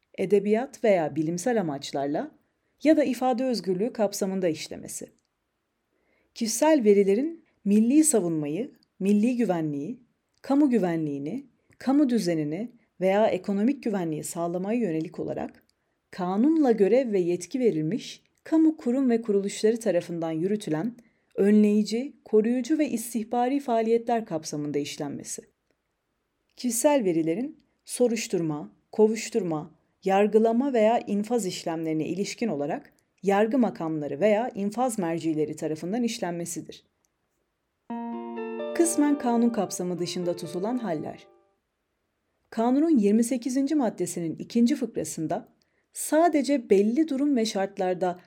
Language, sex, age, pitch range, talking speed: Turkish, female, 40-59, 175-240 Hz, 95 wpm